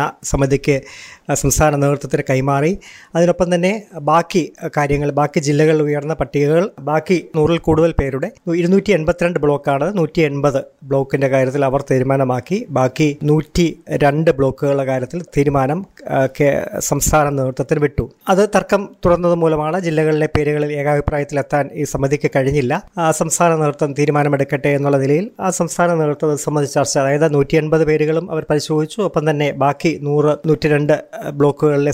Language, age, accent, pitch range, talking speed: Malayalam, 20-39, native, 145-170 Hz, 120 wpm